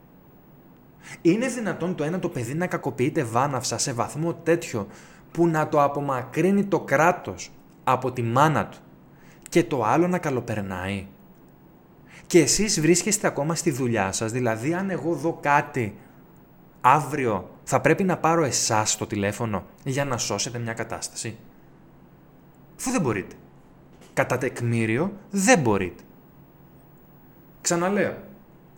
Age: 20-39